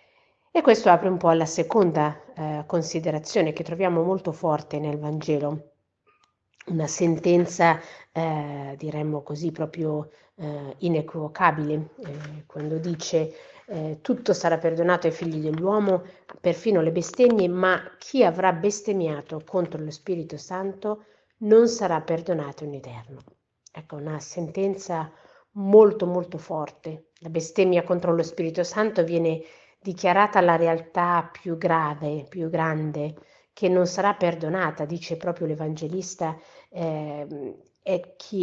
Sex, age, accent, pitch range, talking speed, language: female, 50-69, native, 155-185 Hz, 125 wpm, Italian